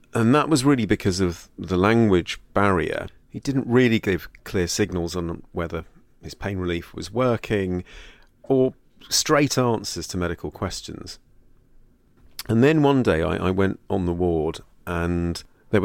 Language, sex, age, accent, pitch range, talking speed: English, male, 40-59, British, 85-110 Hz, 150 wpm